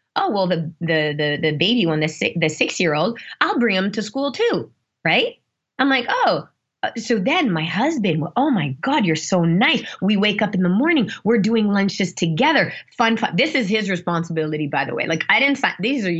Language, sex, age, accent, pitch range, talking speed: English, female, 20-39, American, 175-240 Hz, 215 wpm